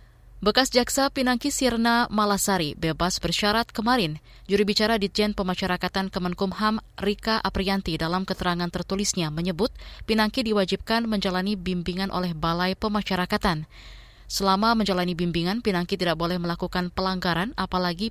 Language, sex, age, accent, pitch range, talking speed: Indonesian, female, 20-39, native, 175-210 Hz, 115 wpm